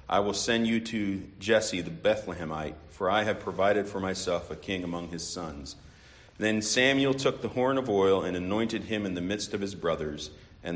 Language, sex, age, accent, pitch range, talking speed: English, male, 40-59, American, 95-120 Hz, 200 wpm